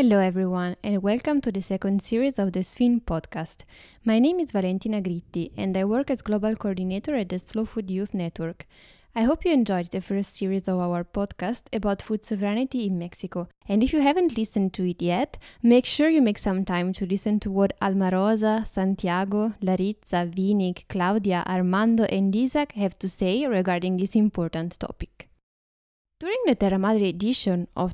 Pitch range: 190-230 Hz